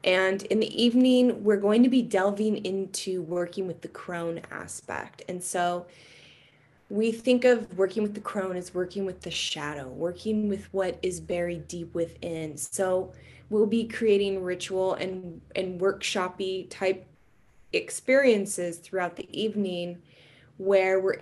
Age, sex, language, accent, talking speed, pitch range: 20-39, female, English, American, 145 wpm, 175-210 Hz